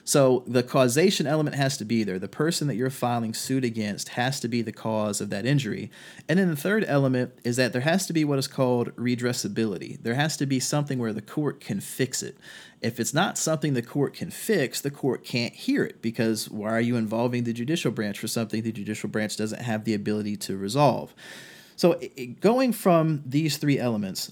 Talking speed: 215 wpm